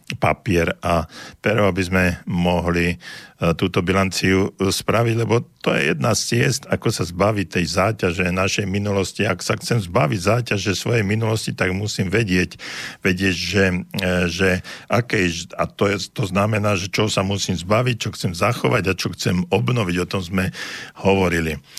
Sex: male